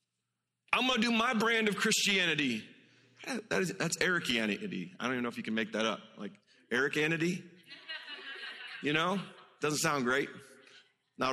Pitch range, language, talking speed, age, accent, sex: 110-145 Hz, English, 160 wpm, 30-49, American, male